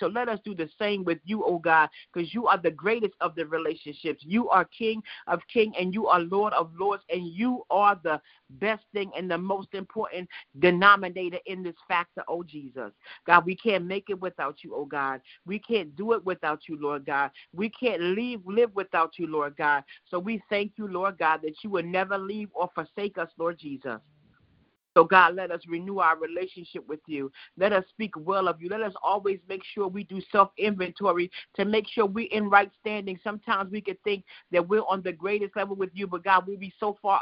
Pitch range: 170-205 Hz